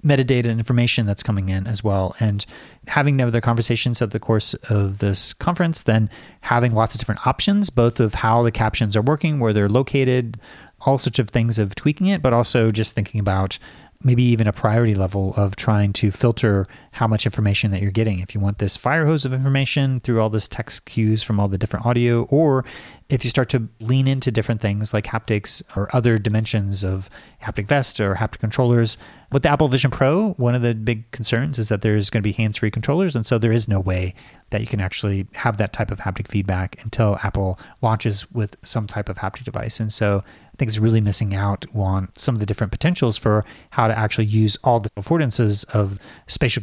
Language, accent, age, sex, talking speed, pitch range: English, American, 30-49, male, 210 wpm, 105-125 Hz